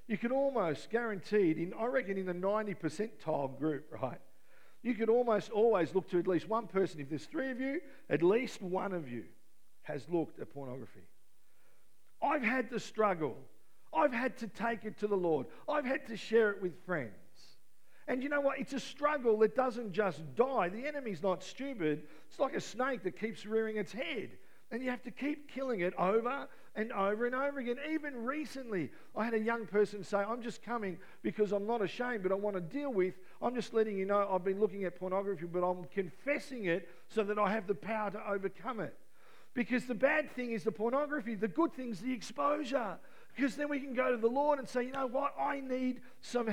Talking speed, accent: 215 wpm, Australian